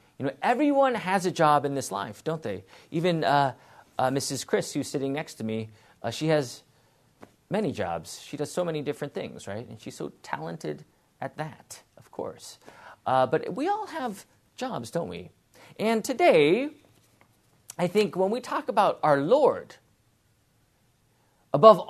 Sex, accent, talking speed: male, American, 165 wpm